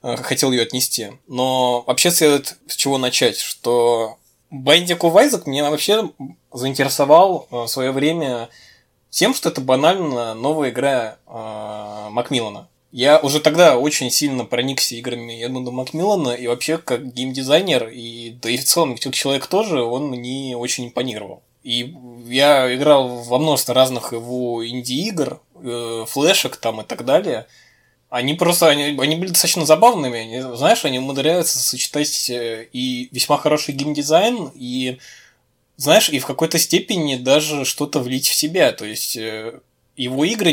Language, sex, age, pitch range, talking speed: Russian, male, 20-39, 125-150 Hz, 140 wpm